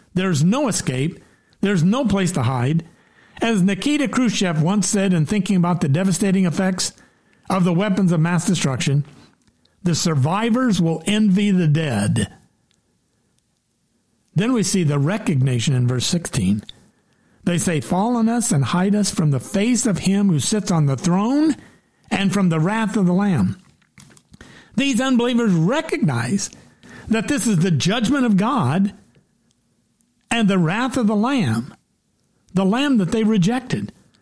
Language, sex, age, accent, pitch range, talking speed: English, male, 60-79, American, 165-215 Hz, 150 wpm